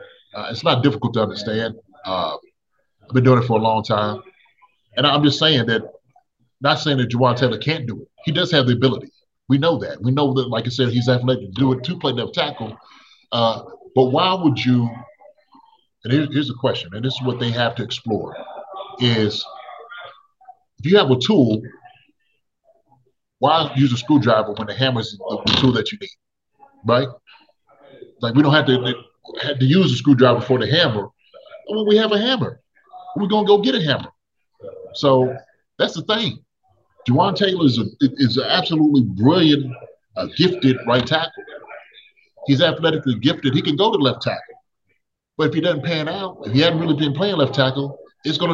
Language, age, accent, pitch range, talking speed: English, 30-49, American, 125-175 Hz, 190 wpm